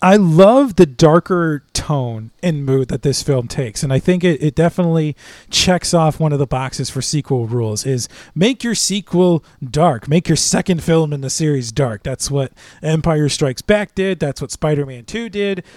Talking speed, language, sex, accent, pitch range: 190 wpm, English, male, American, 140-180 Hz